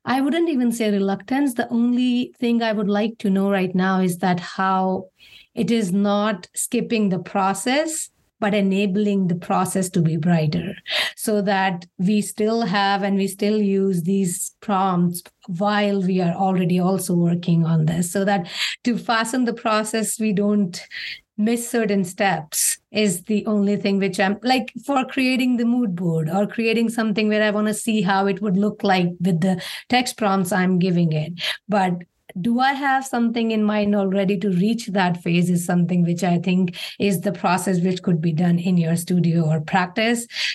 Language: English